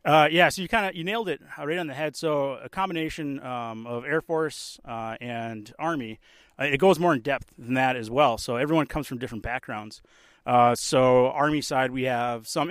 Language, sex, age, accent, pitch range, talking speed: English, male, 30-49, American, 115-155 Hz, 215 wpm